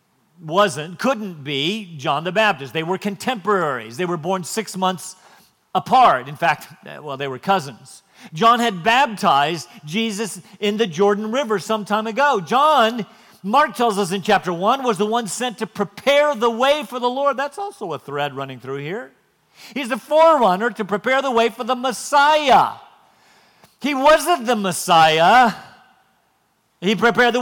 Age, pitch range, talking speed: 50-69, 190-250 Hz, 160 wpm